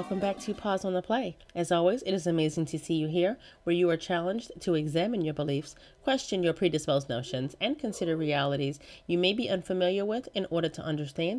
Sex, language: female, English